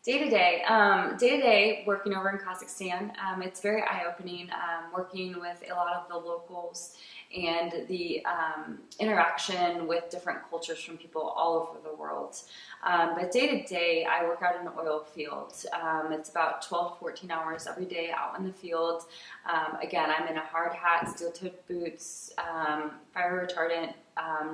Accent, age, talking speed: American, 20-39, 160 wpm